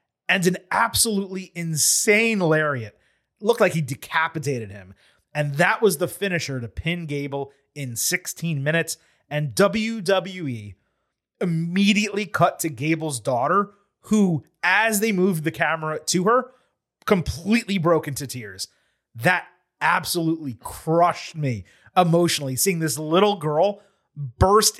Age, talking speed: 30-49, 120 wpm